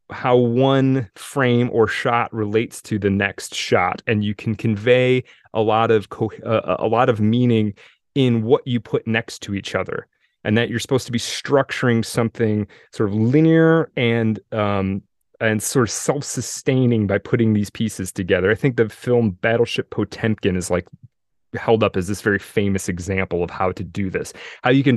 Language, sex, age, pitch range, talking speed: English, male, 30-49, 105-125 Hz, 185 wpm